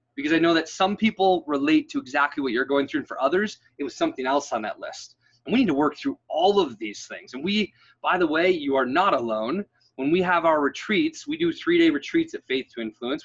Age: 20-39